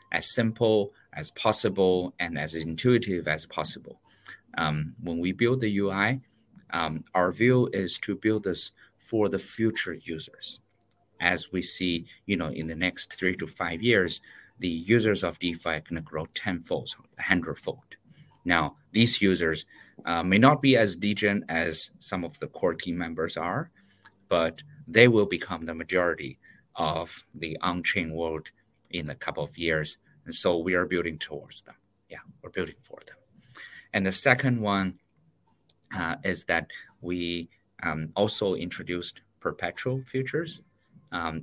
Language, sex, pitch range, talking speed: English, male, 85-110 Hz, 155 wpm